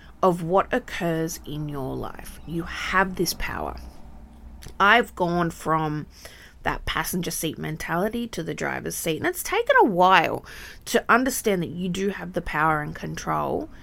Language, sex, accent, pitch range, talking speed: English, female, Australian, 160-220 Hz, 155 wpm